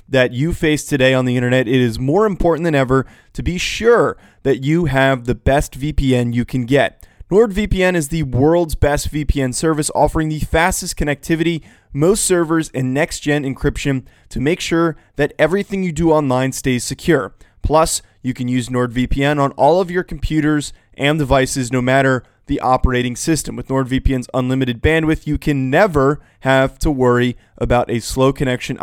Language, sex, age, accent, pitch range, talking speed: English, male, 20-39, American, 130-155 Hz, 170 wpm